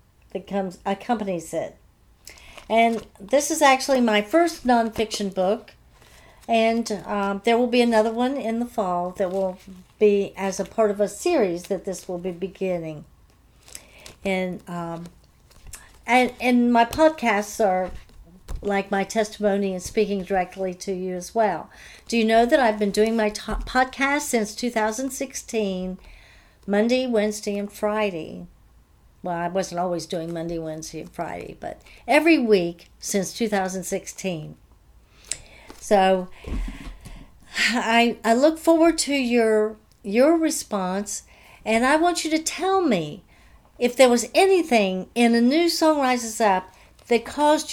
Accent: American